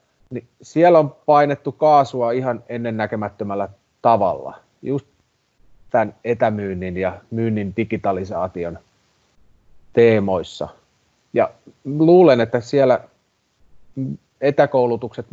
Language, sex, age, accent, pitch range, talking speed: Finnish, male, 30-49, native, 110-140 Hz, 80 wpm